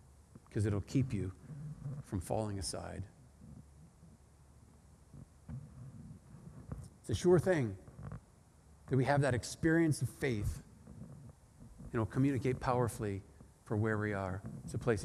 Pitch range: 120-165 Hz